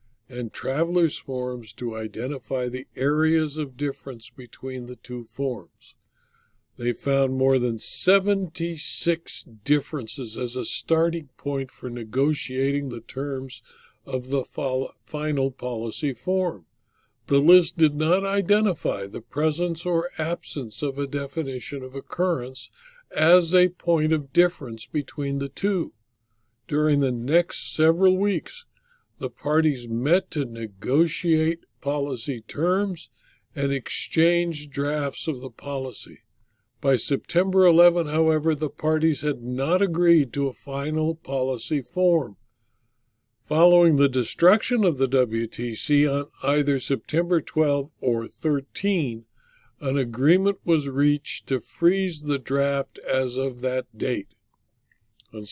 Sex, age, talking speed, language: male, 60-79, 120 wpm, English